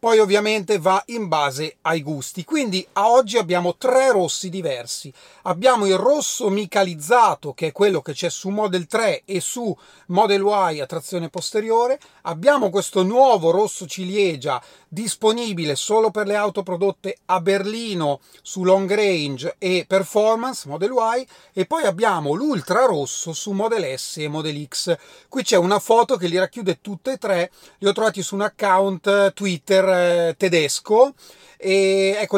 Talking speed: 155 wpm